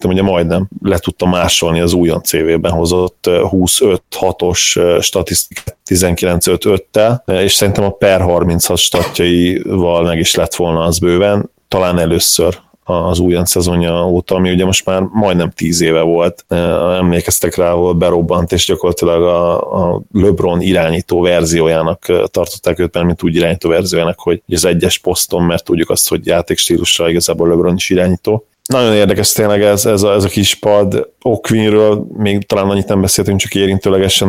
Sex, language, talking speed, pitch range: male, Hungarian, 155 wpm, 85-95 Hz